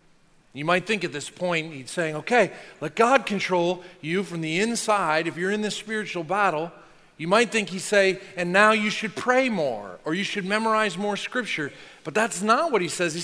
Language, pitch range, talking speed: English, 180-235 Hz, 210 wpm